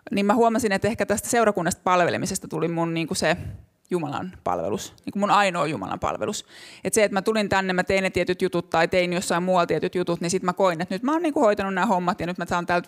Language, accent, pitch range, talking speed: Finnish, native, 175-210 Hz, 245 wpm